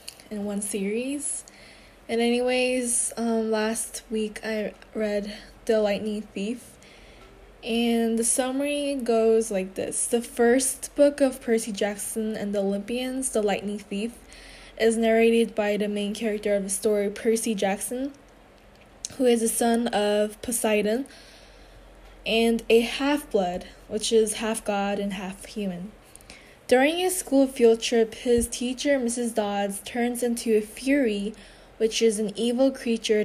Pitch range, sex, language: 205-240 Hz, female, Korean